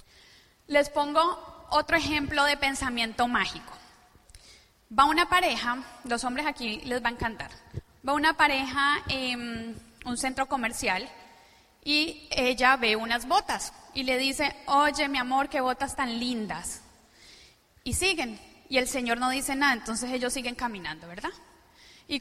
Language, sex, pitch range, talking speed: Spanish, female, 250-310 Hz, 145 wpm